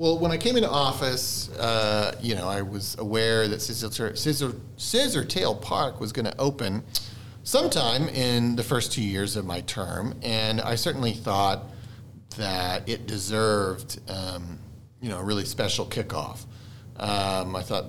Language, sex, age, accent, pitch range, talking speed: English, male, 40-59, American, 100-120 Hz, 160 wpm